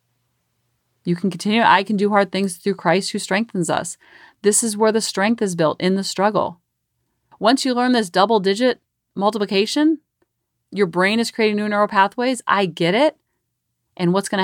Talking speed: 180 wpm